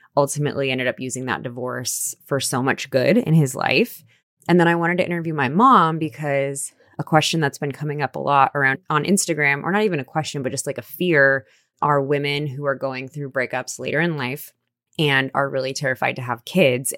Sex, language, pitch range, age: female, English, 130-155 Hz, 20-39